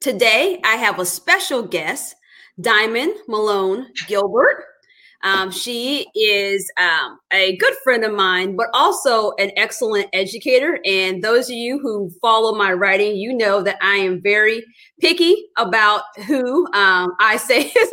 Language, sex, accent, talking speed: English, female, American, 145 wpm